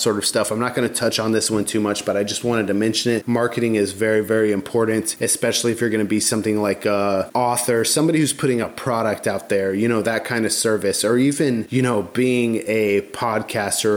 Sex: male